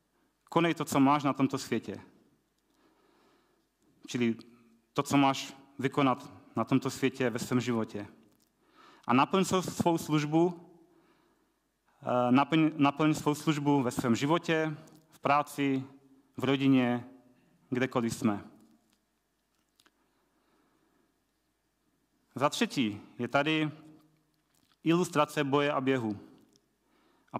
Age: 30-49